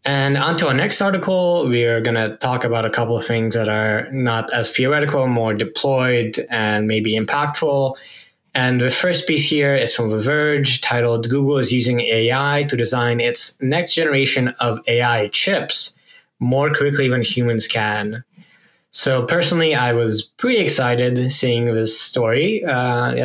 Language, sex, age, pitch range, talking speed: English, male, 10-29, 115-140 Hz, 160 wpm